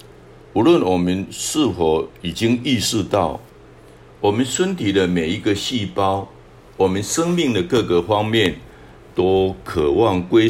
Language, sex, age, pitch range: Chinese, male, 60-79, 85-110 Hz